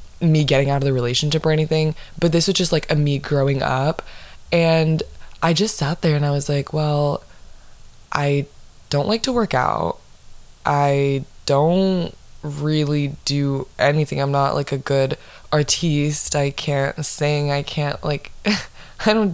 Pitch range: 140-170 Hz